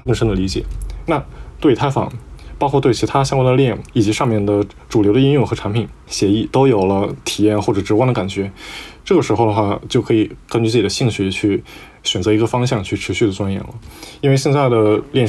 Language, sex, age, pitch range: Chinese, male, 20-39, 105-130 Hz